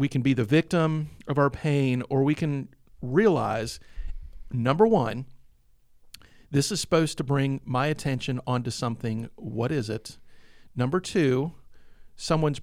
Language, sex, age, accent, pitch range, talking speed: English, male, 40-59, American, 120-160 Hz, 140 wpm